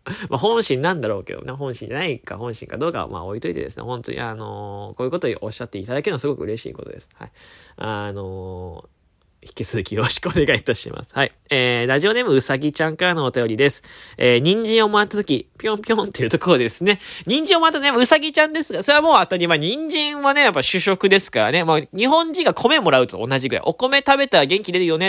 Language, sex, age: Japanese, male, 20-39